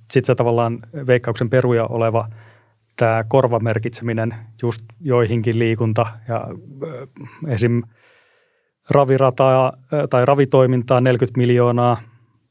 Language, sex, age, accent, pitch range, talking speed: Finnish, male, 30-49, native, 115-130 Hz, 90 wpm